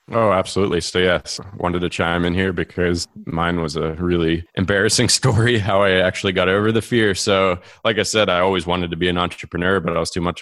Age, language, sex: 20-39, English, male